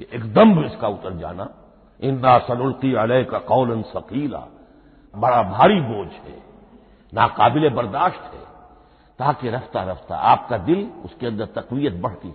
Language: Hindi